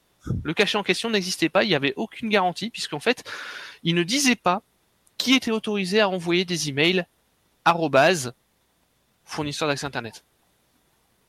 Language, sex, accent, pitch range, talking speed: French, male, French, 140-200 Hz, 150 wpm